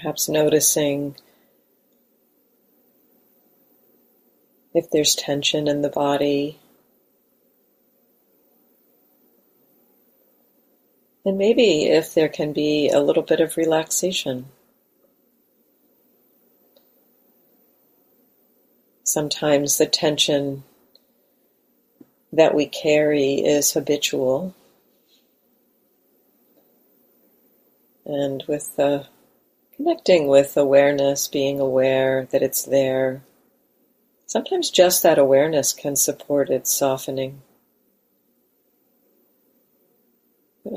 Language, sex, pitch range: English, female, 140-155 Hz